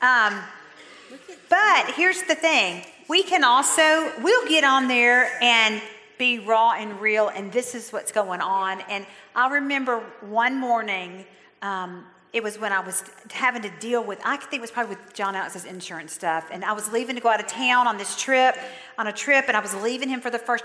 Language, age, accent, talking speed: English, 50-69, American, 205 wpm